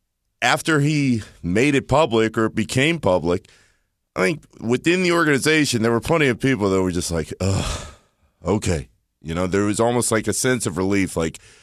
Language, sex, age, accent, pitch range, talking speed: English, male, 30-49, American, 100-140 Hz, 175 wpm